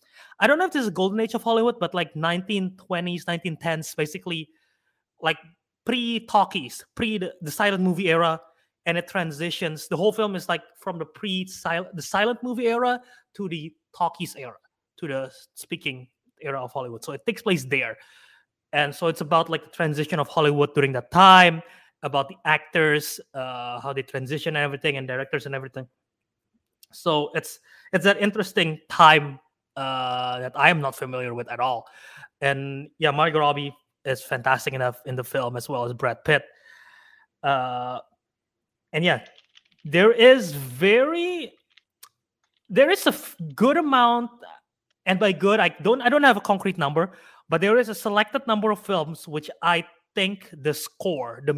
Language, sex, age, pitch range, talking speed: English, male, 20-39, 145-195 Hz, 170 wpm